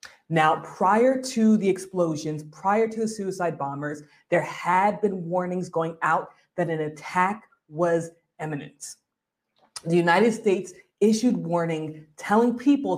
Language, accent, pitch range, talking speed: English, American, 165-220 Hz, 130 wpm